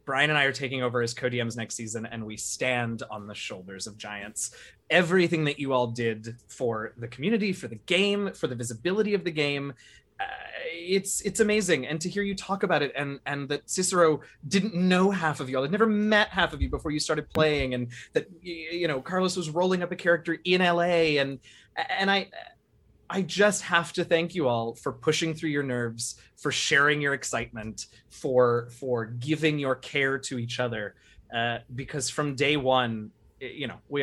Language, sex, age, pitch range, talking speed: English, male, 20-39, 120-170 Hz, 200 wpm